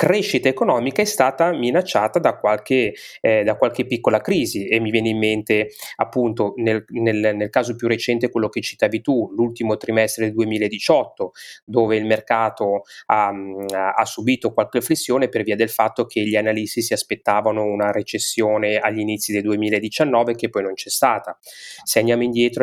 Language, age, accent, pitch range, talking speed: Italian, 20-39, native, 110-125 Hz, 160 wpm